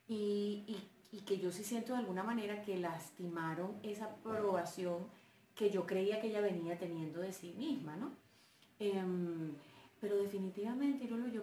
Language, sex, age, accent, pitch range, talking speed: Spanish, female, 30-49, Colombian, 185-230 Hz, 145 wpm